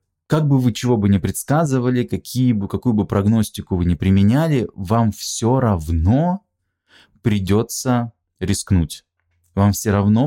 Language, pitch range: Russian, 95-125 Hz